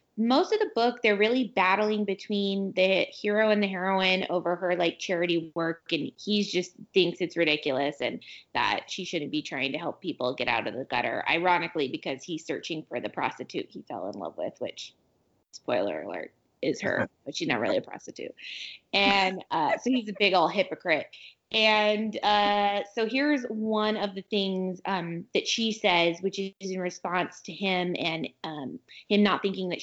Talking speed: 185 wpm